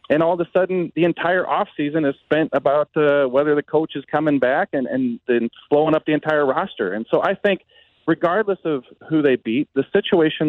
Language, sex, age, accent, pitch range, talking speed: English, male, 40-59, American, 130-155 Hz, 210 wpm